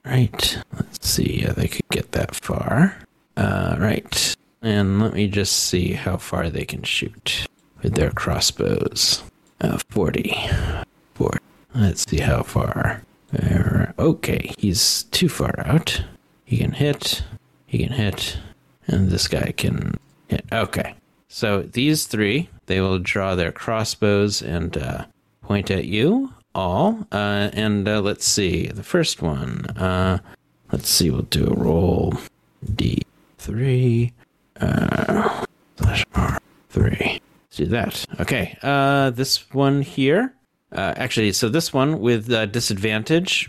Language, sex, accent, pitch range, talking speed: English, male, American, 100-135 Hz, 135 wpm